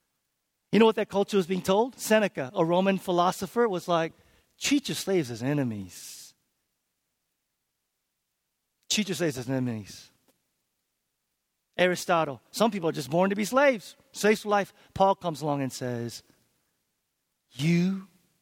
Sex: male